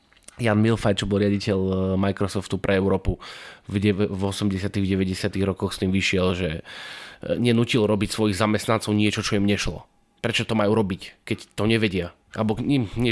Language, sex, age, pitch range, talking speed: Slovak, male, 20-39, 100-120 Hz, 160 wpm